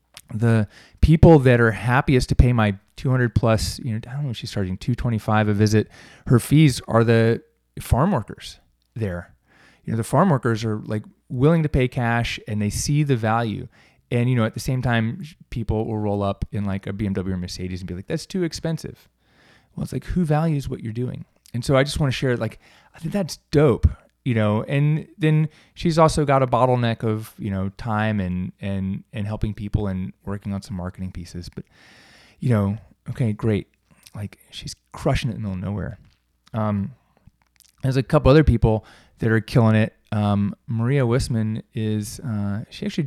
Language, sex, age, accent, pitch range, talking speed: English, male, 20-39, American, 100-130 Hz, 200 wpm